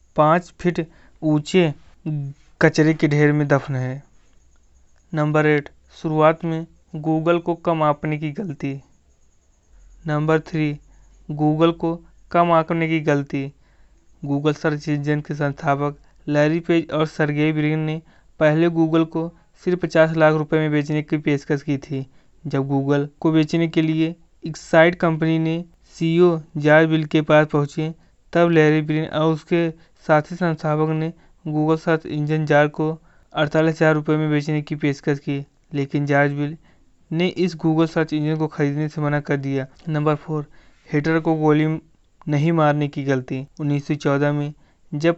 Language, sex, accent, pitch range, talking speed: Hindi, male, native, 145-160 Hz, 150 wpm